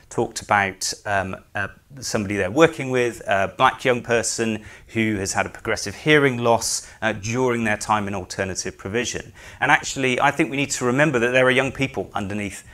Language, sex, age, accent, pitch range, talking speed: English, male, 30-49, British, 100-125 Hz, 190 wpm